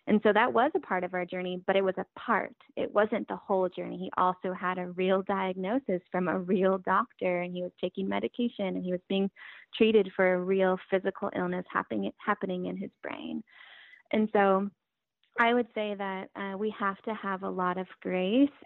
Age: 20-39